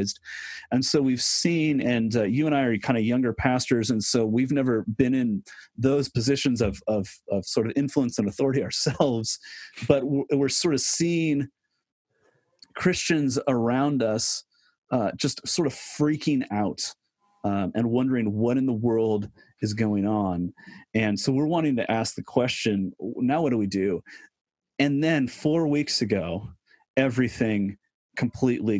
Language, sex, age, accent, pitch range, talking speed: English, male, 30-49, American, 100-130 Hz, 155 wpm